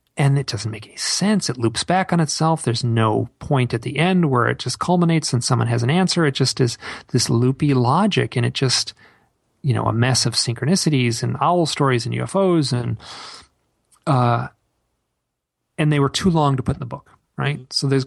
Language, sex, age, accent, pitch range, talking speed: English, male, 40-59, American, 115-140 Hz, 205 wpm